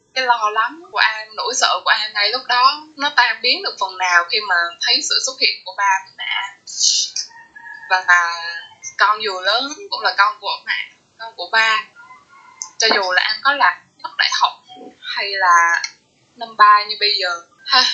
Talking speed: 185 wpm